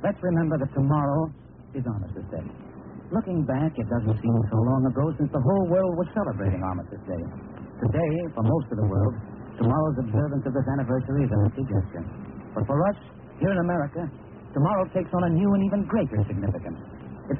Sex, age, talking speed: male, 60-79, 185 wpm